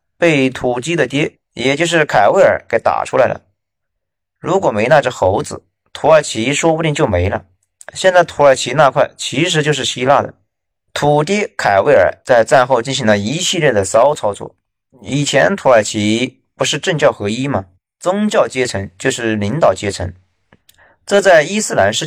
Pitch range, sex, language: 100-165 Hz, male, Chinese